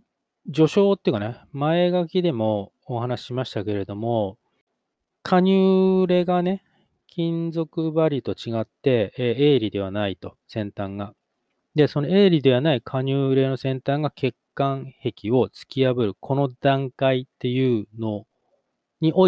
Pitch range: 105-150 Hz